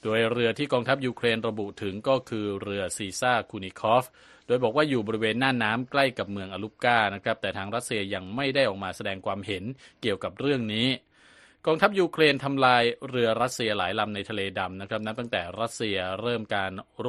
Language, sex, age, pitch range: Thai, male, 20-39, 95-120 Hz